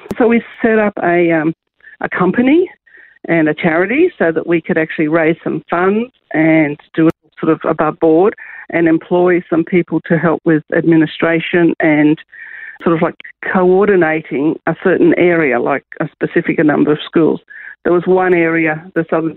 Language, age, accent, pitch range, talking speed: English, 50-69, Australian, 155-180 Hz, 165 wpm